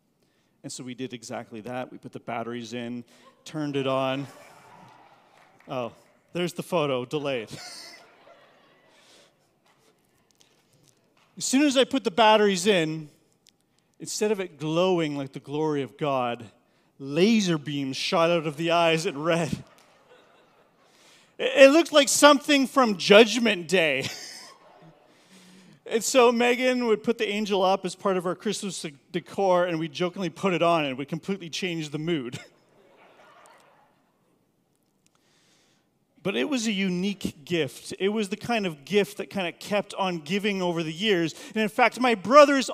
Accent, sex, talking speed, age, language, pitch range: American, male, 145 wpm, 40-59, English, 150-215 Hz